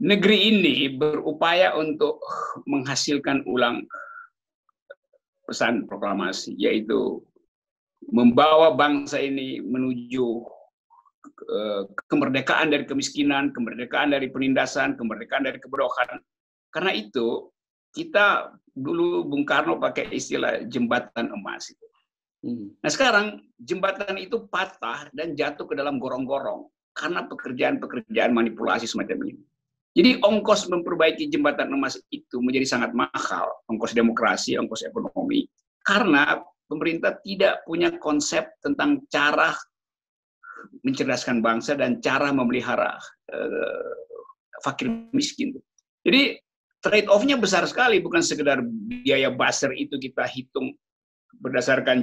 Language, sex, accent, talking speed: Indonesian, male, native, 100 wpm